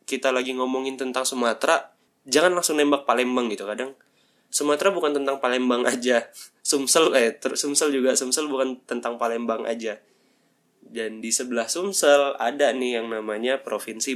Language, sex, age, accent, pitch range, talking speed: Indonesian, male, 10-29, native, 120-150 Hz, 150 wpm